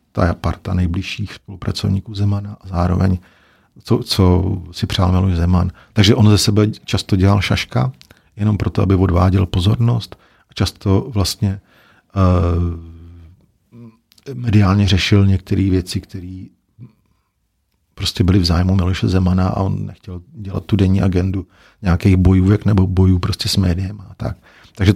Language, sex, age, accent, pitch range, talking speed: Czech, male, 50-69, native, 90-105 Hz, 140 wpm